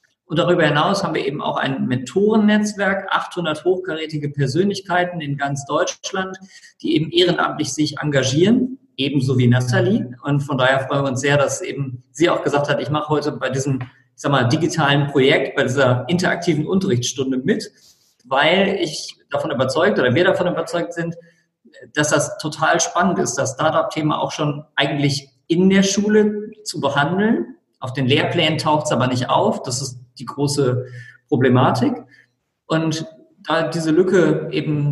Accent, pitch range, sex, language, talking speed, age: German, 135-170 Hz, male, German, 160 wpm, 50-69